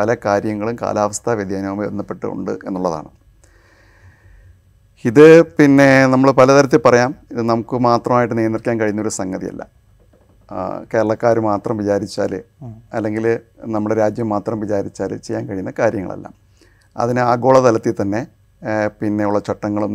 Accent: native